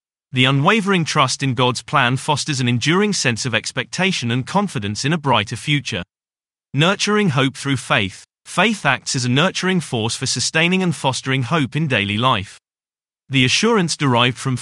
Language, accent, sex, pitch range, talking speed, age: English, British, male, 120-165 Hz, 165 wpm, 30-49